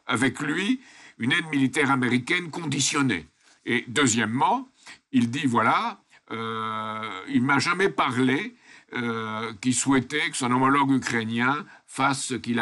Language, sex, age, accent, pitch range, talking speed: French, male, 60-79, French, 120-175 Hz, 130 wpm